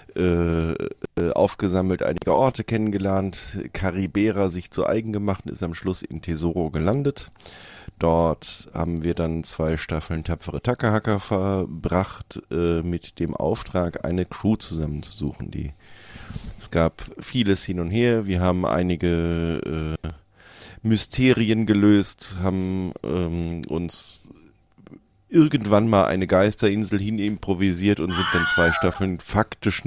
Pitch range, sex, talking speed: 85-110 Hz, male, 125 wpm